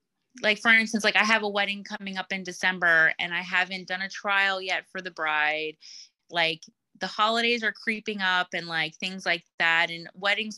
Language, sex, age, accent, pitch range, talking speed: English, female, 20-39, American, 175-200 Hz, 200 wpm